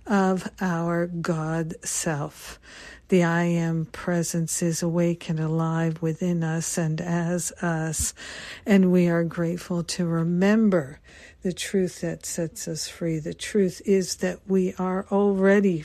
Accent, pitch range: American, 165-185 Hz